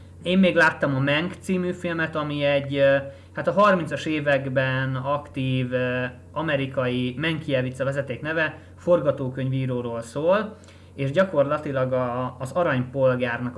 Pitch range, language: 125-155 Hz, Hungarian